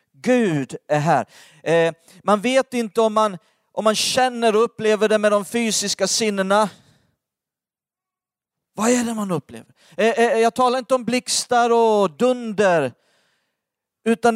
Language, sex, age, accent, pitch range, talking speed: Swedish, male, 40-59, native, 165-225 Hz, 125 wpm